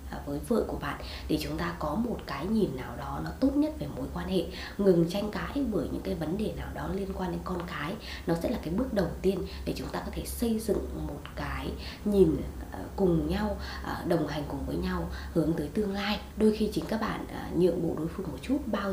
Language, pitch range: Vietnamese, 165-225 Hz